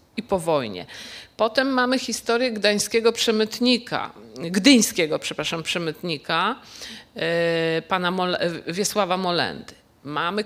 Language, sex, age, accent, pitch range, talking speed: Polish, female, 50-69, native, 180-235 Hz, 100 wpm